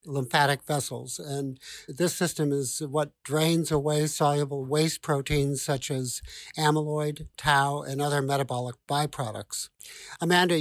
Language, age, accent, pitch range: English, 50-69, American, 135-155 Hz